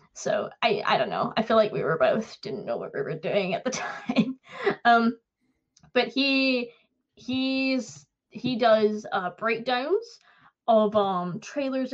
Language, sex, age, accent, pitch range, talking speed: English, female, 10-29, American, 195-230 Hz, 155 wpm